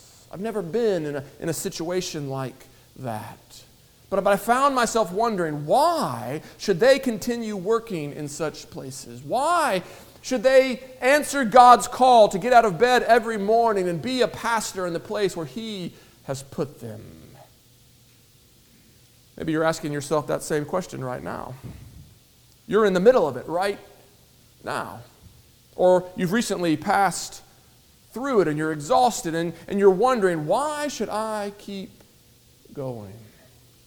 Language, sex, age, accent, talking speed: English, male, 40-59, American, 145 wpm